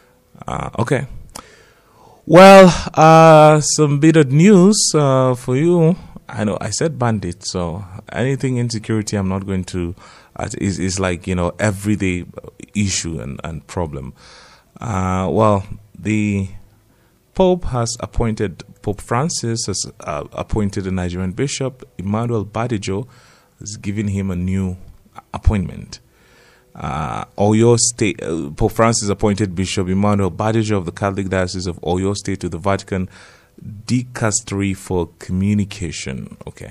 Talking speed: 135 wpm